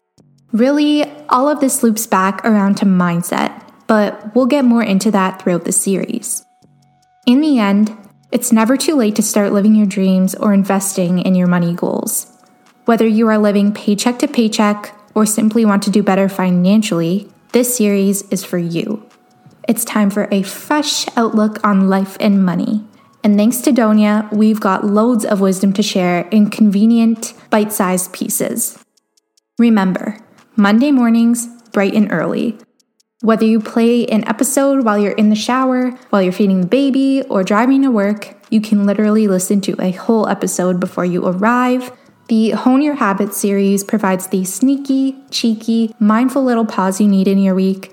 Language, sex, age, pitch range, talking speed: English, female, 10-29, 195-235 Hz, 165 wpm